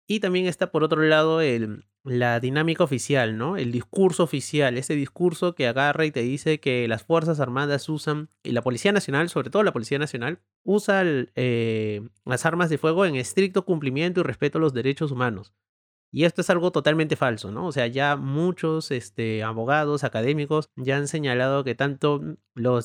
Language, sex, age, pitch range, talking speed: Spanish, male, 30-49, 125-160 Hz, 180 wpm